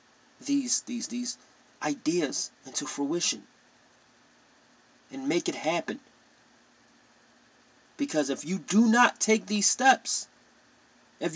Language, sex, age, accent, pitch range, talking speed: English, male, 30-49, American, 155-245 Hz, 100 wpm